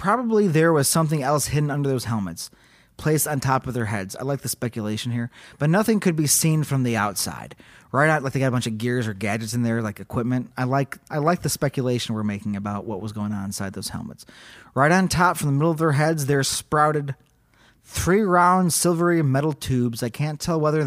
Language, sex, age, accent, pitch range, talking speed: English, male, 30-49, American, 115-155 Hz, 225 wpm